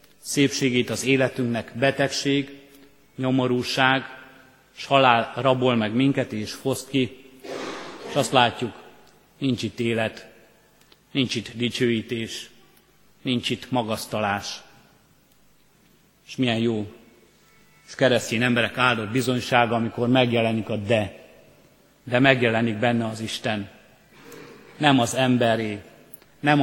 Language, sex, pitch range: Hungarian, male, 115-135 Hz